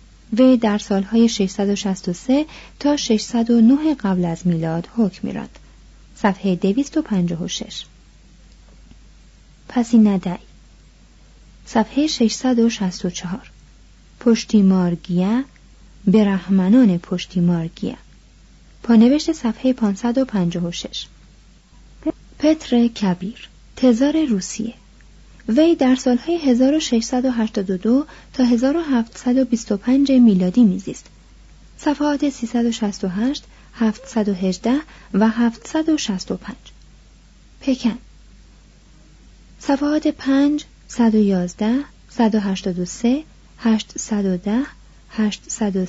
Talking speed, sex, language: 60 wpm, female, Persian